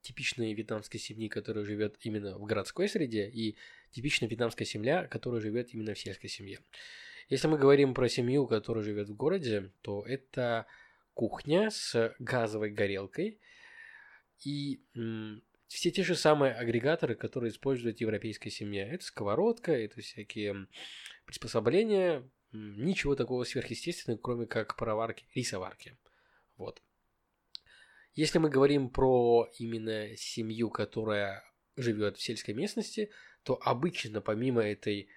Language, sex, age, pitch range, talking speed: Russian, male, 20-39, 110-145 Hz, 125 wpm